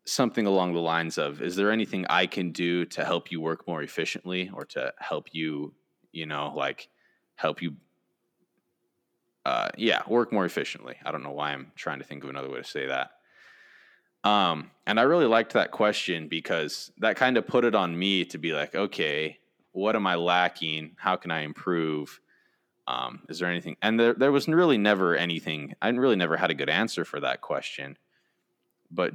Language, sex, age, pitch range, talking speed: English, male, 20-39, 80-95 Hz, 195 wpm